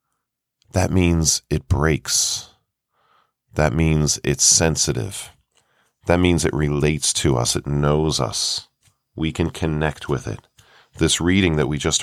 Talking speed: 135 wpm